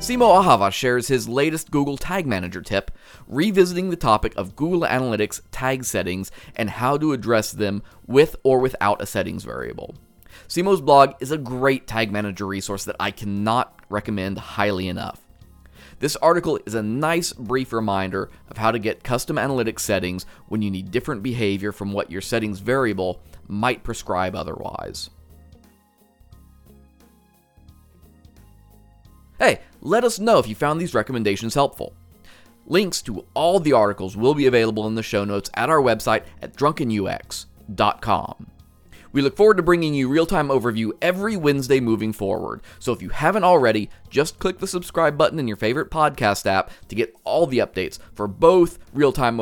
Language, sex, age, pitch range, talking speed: English, male, 30-49, 100-145 Hz, 160 wpm